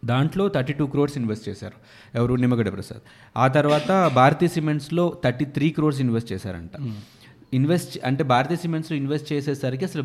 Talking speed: 150 wpm